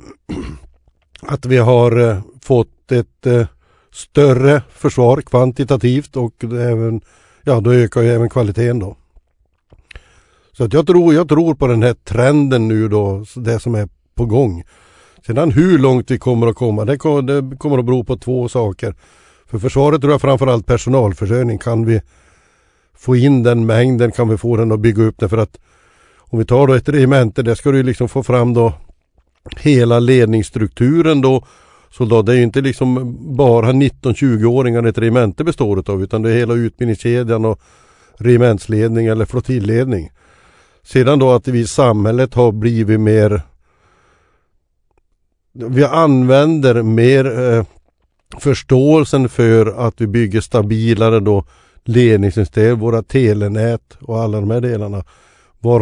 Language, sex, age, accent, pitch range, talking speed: Swedish, male, 60-79, native, 110-130 Hz, 145 wpm